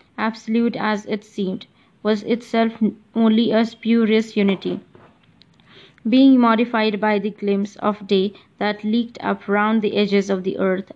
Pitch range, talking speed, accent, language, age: 195-220 Hz, 140 wpm, Indian, English, 20-39